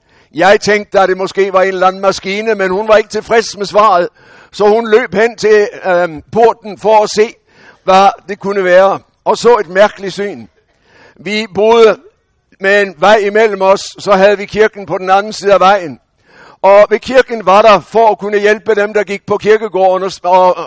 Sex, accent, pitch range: male, German, 190-215 Hz